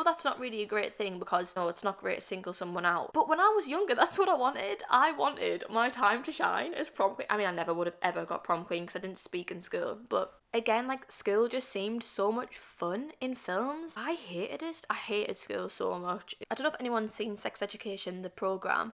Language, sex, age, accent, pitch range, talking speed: English, female, 10-29, British, 195-270 Hz, 245 wpm